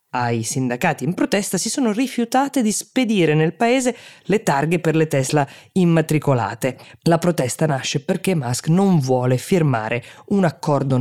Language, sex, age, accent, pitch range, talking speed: Italian, female, 20-39, native, 130-170 Hz, 145 wpm